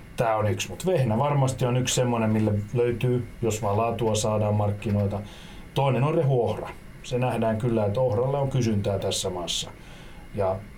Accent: native